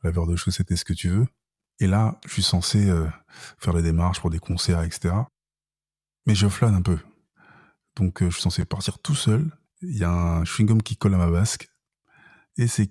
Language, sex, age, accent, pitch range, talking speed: French, male, 20-39, French, 95-115 Hz, 215 wpm